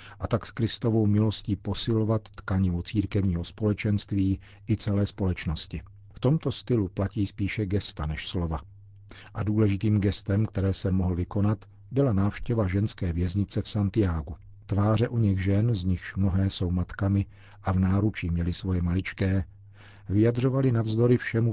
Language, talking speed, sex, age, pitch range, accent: Czech, 145 wpm, male, 50-69, 95-105 Hz, native